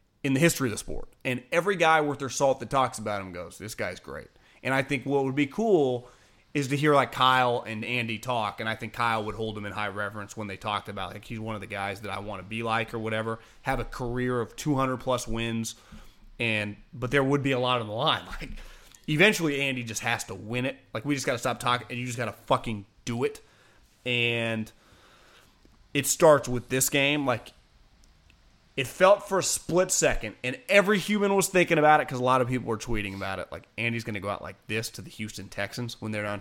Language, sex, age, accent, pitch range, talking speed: English, male, 30-49, American, 110-140 Hz, 240 wpm